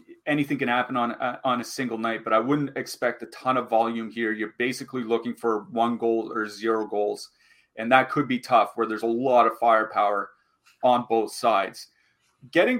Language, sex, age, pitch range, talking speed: English, male, 30-49, 115-140 Hz, 195 wpm